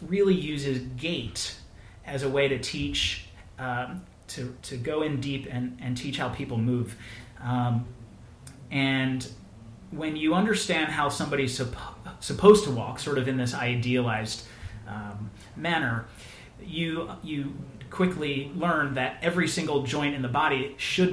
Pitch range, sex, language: 120-145 Hz, male, English